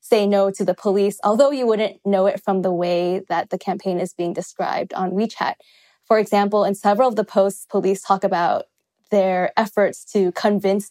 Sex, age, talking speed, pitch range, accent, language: female, 10-29, 195 wpm, 185-215 Hz, American, English